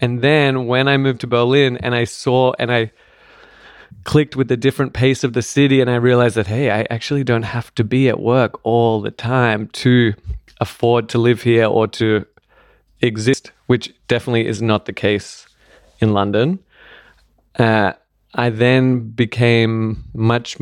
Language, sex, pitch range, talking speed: English, male, 115-130 Hz, 165 wpm